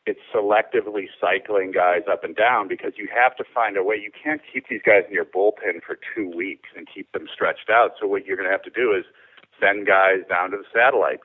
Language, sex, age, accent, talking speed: English, male, 50-69, American, 240 wpm